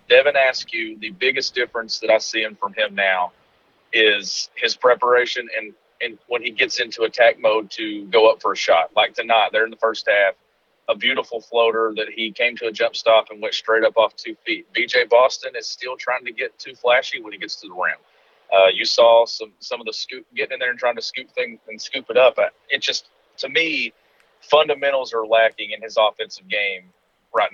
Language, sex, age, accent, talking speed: English, male, 40-59, American, 215 wpm